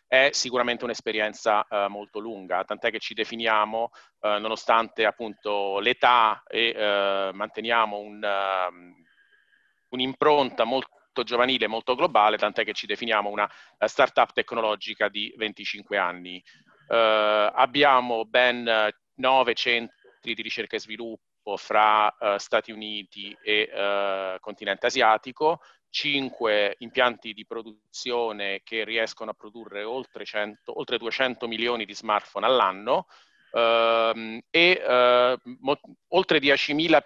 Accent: native